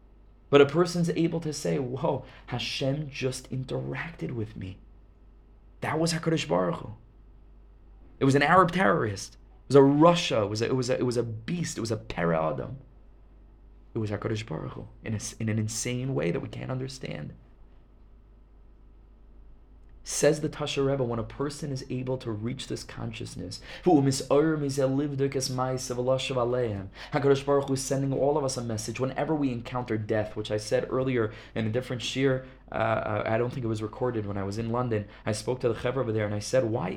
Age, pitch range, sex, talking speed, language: 20-39, 110-130 Hz, male, 180 wpm, English